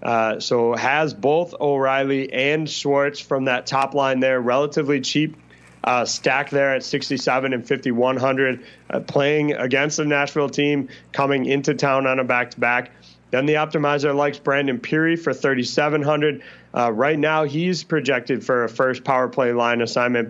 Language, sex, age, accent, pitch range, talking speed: English, male, 20-39, American, 120-140 Hz, 155 wpm